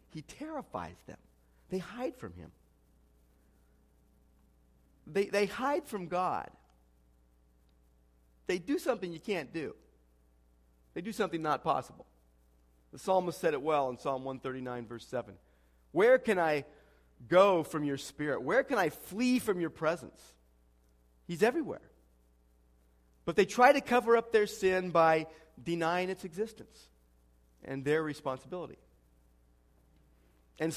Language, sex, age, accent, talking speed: English, male, 40-59, American, 125 wpm